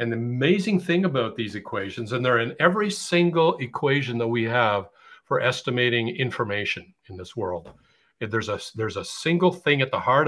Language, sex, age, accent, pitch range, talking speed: English, male, 50-69, American, 115-135 Hz, 185 wpm